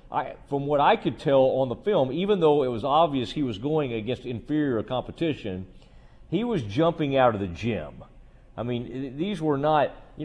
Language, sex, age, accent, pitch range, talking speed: English, male, 40-59, American, 120-165 Hz, 195 wpm